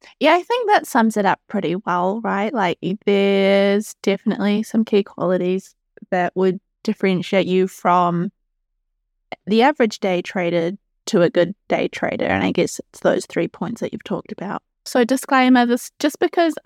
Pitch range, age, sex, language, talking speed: 185-245 Hz, 20-39, female, English, 160 wpm